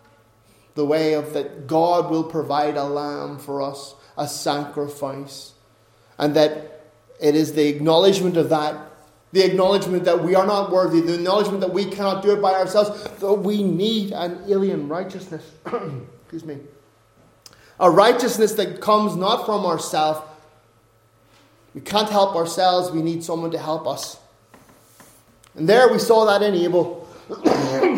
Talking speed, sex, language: 150 wpm, male, English